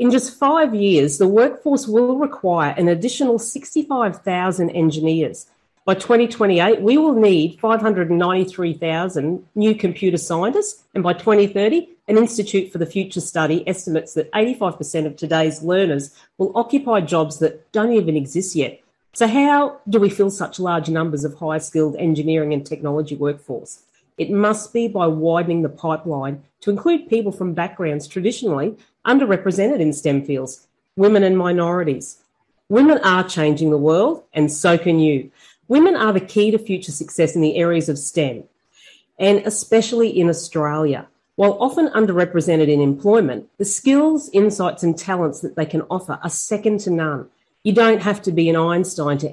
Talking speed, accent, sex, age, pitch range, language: 155 wpm, Australian, female, 40-59, 160-215 Hz, English